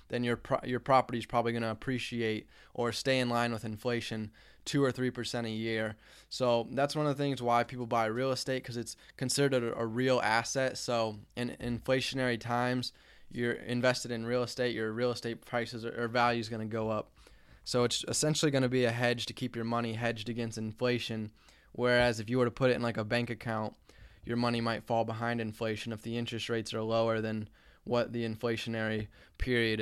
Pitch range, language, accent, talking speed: 115-130 Hz, English, American, 210 wpm